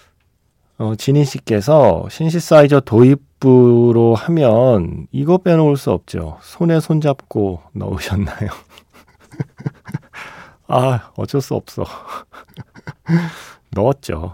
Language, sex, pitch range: Korean, male, 100-145 Hz